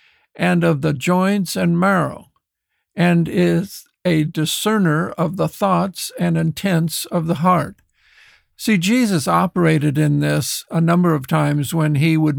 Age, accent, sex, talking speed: 60-79, American, male, 145 wpm